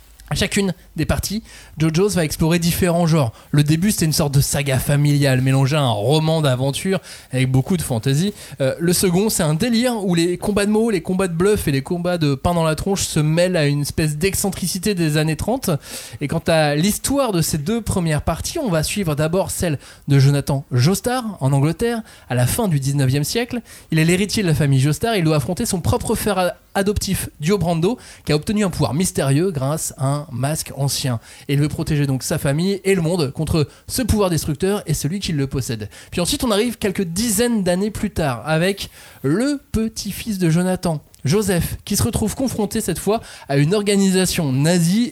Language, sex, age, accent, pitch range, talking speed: French, male, 20-39, French, 145-195 Hz, 205 wpm